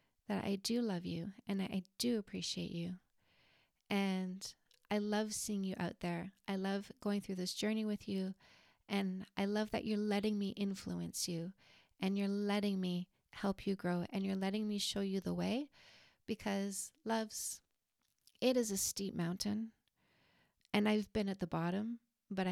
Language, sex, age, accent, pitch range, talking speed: English, female, 30-49, American, 190-215 Hz, 170 wpm